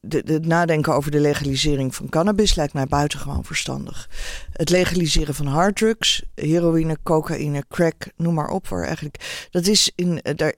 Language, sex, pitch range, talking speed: Dutch, female, 150-180 Hz, 155 wpm